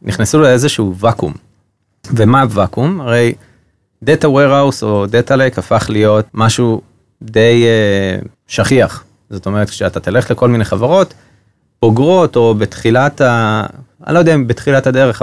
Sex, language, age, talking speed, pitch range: male, Hebrew, 30-49, 135 wpm, 105-130 Hz